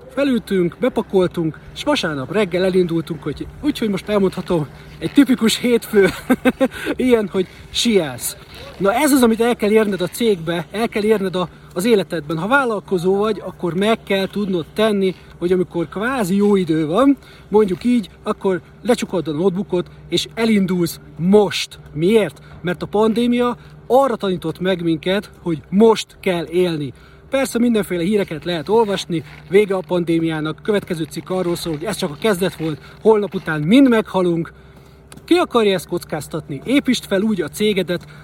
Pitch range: 170-220 Hz